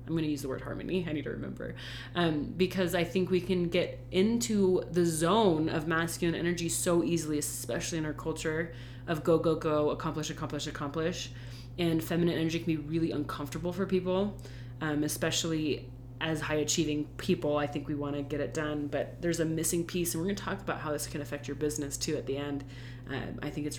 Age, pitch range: 30-49, 140-180 Hz